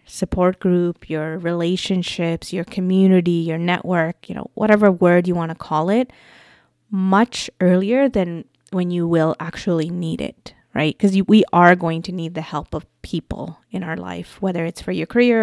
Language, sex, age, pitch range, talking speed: English, female, 20-39, 165-190 Hz, 175 wpm